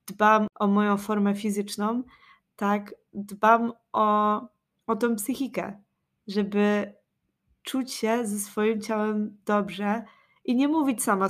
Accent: native